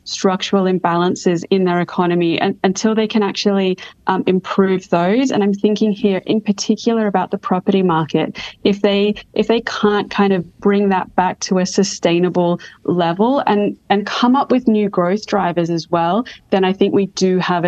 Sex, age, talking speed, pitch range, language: female, 20-39, 180 wpm, 175-200 Hz, English